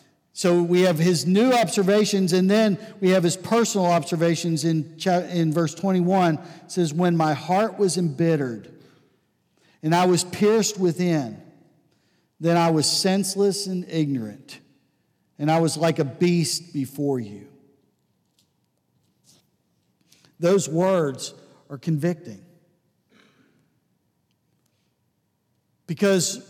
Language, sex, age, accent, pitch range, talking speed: English, male, 50-69, American, 145-180 Hz, 105 wpm